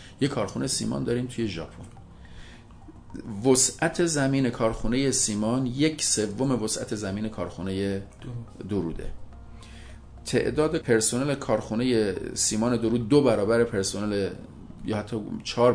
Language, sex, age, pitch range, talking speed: Persian, male, 40-59, 100-125 Hz, 105 wpm